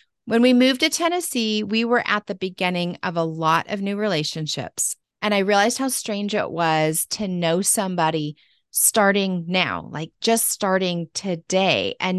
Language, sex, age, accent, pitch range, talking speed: English, female, 30-49, American, 170-210 Hz, 160 wpm